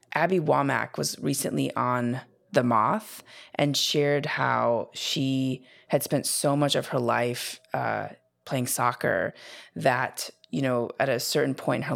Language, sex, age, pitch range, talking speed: English, female, 20-39, 125-150 Hz, 150 wpm